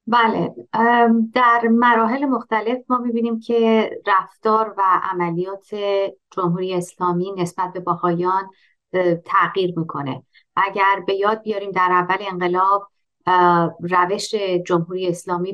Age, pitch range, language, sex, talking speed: 30-49, 175-210 Hz, Persian, female, 105 wpm